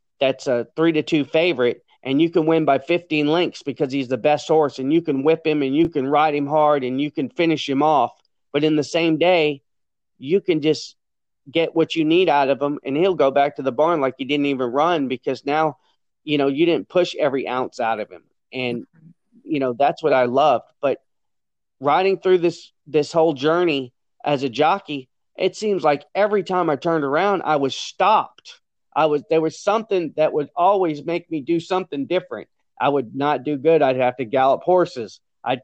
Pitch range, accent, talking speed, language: 140-170 Hz, American, 210 wpm, English